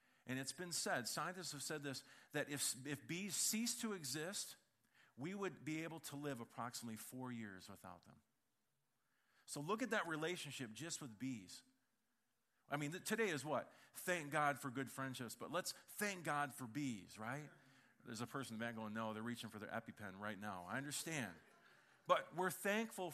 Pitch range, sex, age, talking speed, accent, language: 120-160 Hz, male, 40-59, 185 wpm, American, English